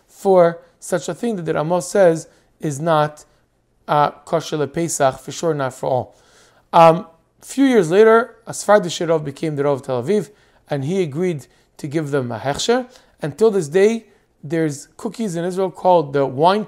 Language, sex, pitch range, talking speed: English, male, 160-215 Hz, 180 wpm